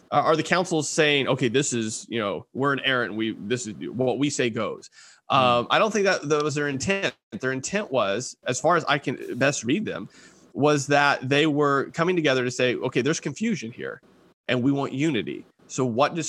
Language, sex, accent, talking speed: English, male, American, 215 wpm